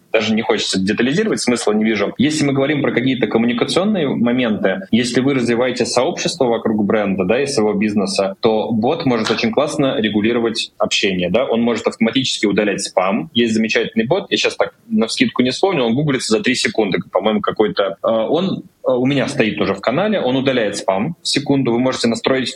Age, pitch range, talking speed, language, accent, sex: 20-39, 110-135 Hz, 180 wpm, Russian, native, male